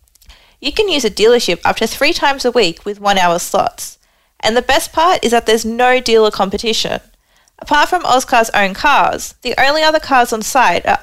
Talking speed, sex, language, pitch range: 195 wpm, female, English, 200-275 Hz